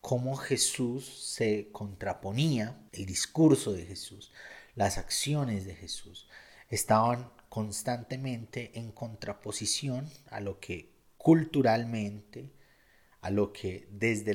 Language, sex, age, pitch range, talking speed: Spanish, male, 30-49, 100-130 Hz, 100 wpm